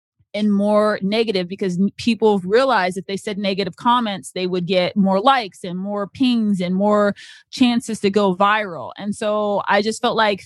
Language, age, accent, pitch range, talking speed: English, 20-39, American, 185-225 Hz, 180 wpm